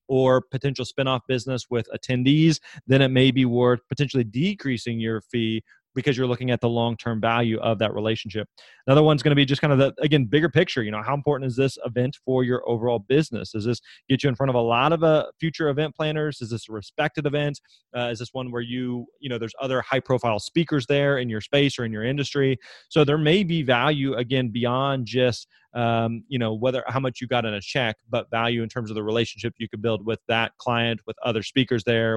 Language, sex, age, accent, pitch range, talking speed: English, male, 30-49, American, 120-140 Hz, 240 wpm